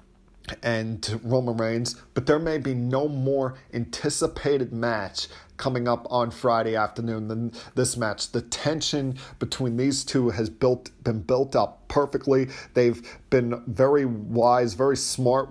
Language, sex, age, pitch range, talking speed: English, male, 40-59, 115-135 Hz, 140 wpm